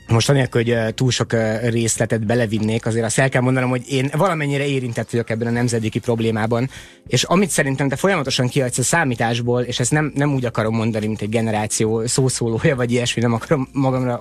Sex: male